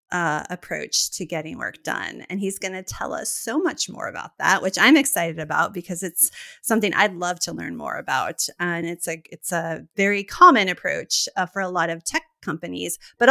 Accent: American